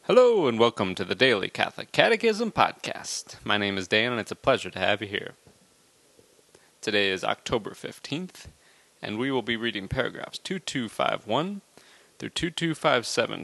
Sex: male